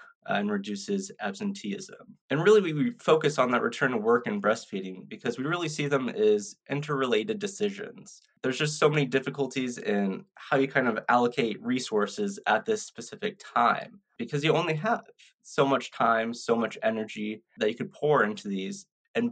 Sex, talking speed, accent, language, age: male, 170 wpm, American, English, 20-39